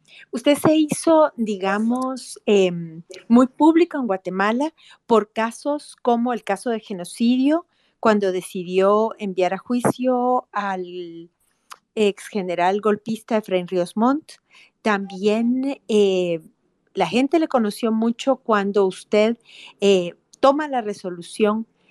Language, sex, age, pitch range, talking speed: Spanish, female, 50-69, 195-255 Hz, 110 wpm